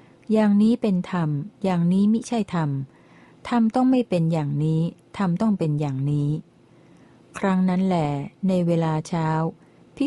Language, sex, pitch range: Thai, female, 155-195 Hz